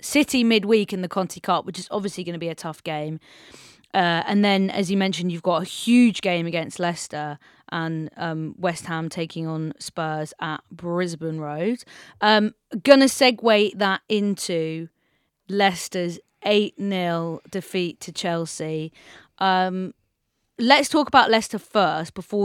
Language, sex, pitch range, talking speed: English, female, 165-200 Hz, 150 wpm